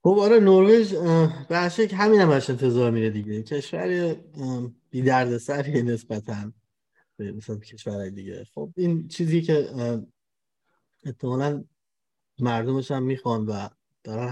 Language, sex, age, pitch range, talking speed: Persian, male, 30-49, 115-145 Hz, 120 wpm